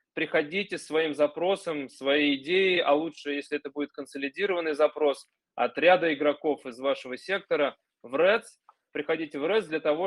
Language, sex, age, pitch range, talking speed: Russian, male, 20-39, 140-170 Hz, 150 wpm